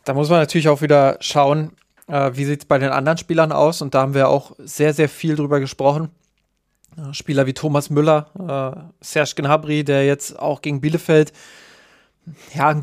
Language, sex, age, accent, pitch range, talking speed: German, male, 20-39, German, 145-165 Hz, 185 wpm